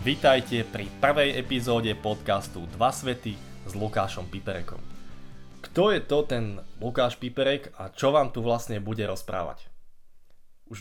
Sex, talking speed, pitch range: male, 135 wpm, 100-125 Hz